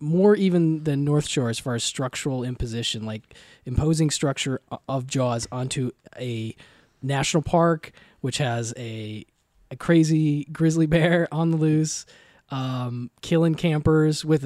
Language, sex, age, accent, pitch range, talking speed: English, male, 20-39, American, 125-165 Hz, 135 wpm